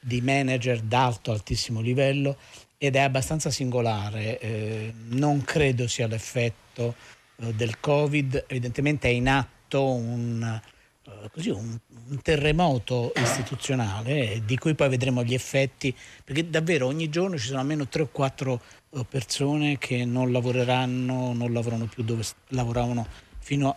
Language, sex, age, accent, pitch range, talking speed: Italian, male, 50-69, native, 115-140 Hz, 125 wpm